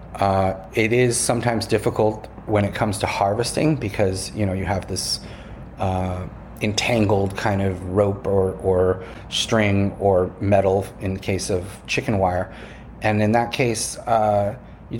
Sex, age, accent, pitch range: male, 30-49, American, 95-110 Hz